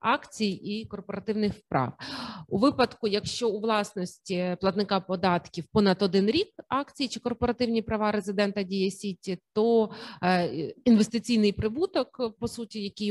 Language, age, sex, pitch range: Ukrainian, 30-49, female, 185-225 Hz